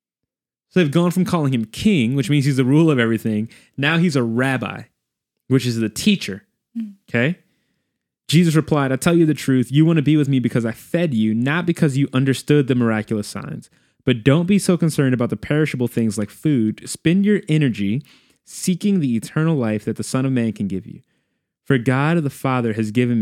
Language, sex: English, male